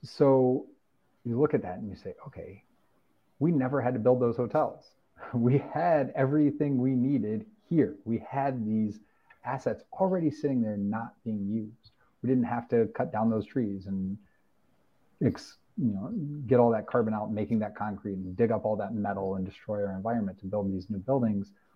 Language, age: English, 30-49